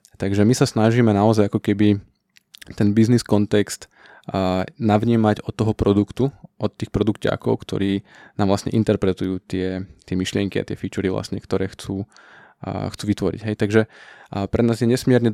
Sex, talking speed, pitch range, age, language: male, 150 wpm, 100-110 Hz, 20-39, Slovak